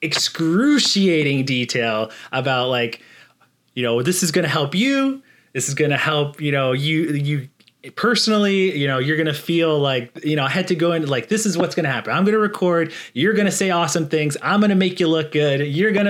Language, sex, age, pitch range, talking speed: English, male, 30-49, 130-175 Hz, 230 wpm